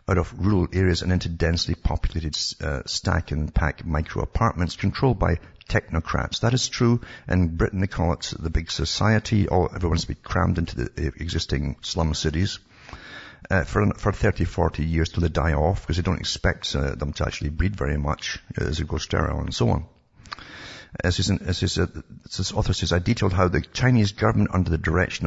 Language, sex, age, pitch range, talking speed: English, male, 60-79, 80-105 Hz, 185 wpm